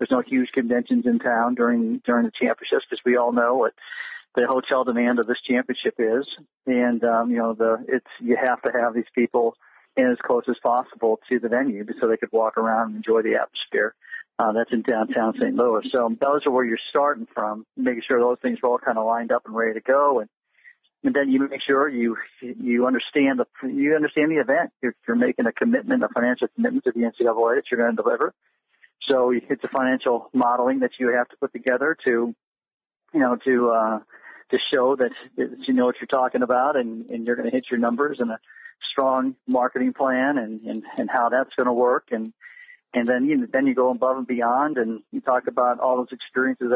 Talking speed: 220 wpm